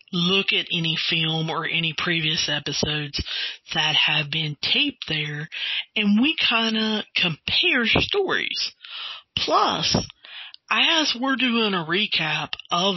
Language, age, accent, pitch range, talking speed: English, 40-59, American, 160-235 Hz, 120 wpm